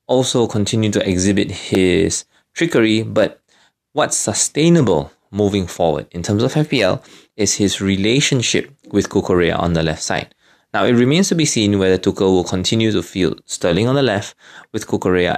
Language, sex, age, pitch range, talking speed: English, male, 20-39, 95-130 Hz, 165 wpm